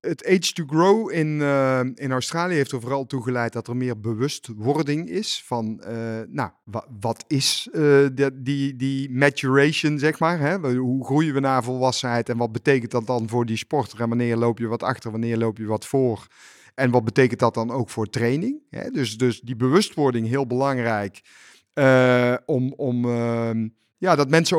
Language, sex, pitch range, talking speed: Dutch, male, 120-145 Hz, 190 wpm